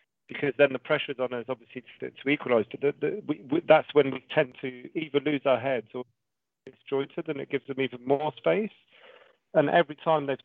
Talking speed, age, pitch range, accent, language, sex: 205 wpm, 40-59, 130-160 Hz, British, English, male